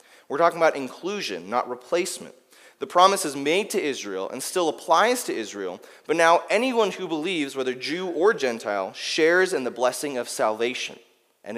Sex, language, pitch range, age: male, English, 125-180 Hz, 30-49